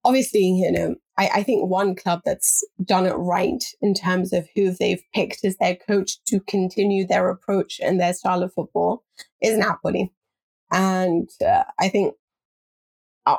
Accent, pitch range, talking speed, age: British, 180-200 Hz, 165 wpm, 30-49